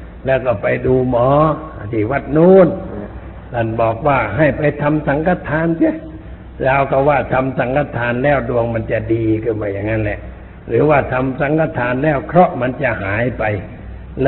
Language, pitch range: Thai, 110-155 Hz